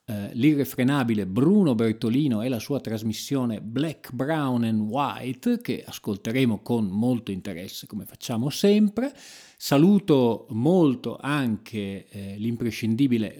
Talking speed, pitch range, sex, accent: 105 wpm, 110-150 Hz, male, native